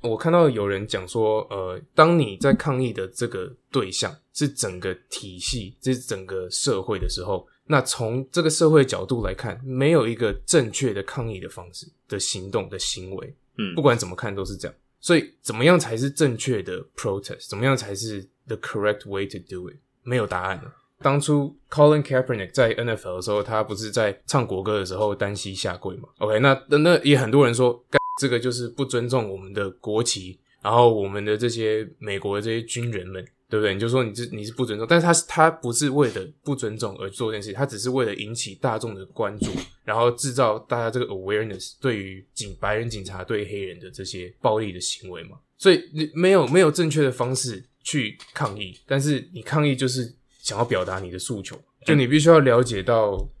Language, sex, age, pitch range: English, male, 10-29, 105-140 Hz